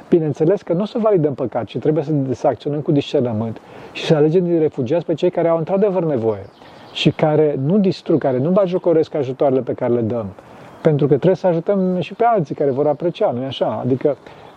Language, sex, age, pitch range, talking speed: Romanian, male, 30-49, 140-195 Hz, 205 wpm